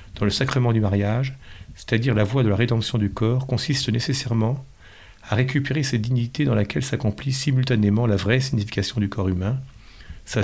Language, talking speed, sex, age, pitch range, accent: French, 170 wpm, male, 40-59, 100-130 Hz, French